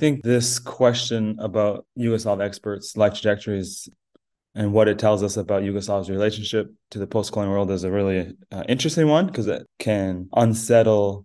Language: English